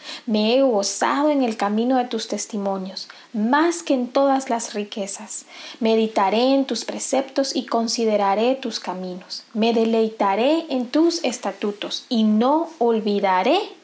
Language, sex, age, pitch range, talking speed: Spanish, female, 30-49, 215-285 Hz, 135 wpm